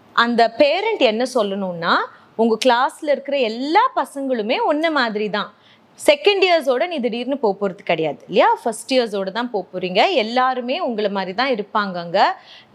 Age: 30-49